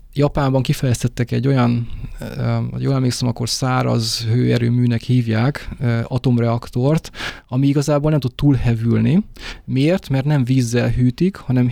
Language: Hungarian